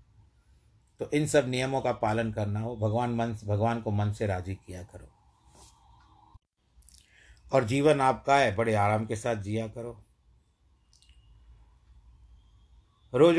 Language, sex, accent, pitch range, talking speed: Hindi, male, native, 100-115 Hz, 125 wpm